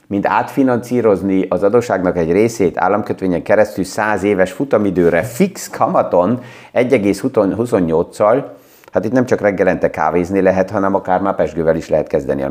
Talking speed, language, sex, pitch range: 140 wpm, Hungarian, male, 95-120 Hz